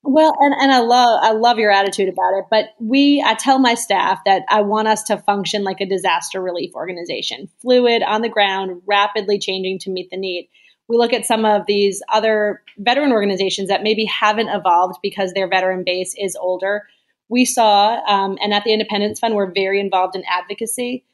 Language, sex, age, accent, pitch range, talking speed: English, female, 30-49, American, 190-225 Hz, 200 wpm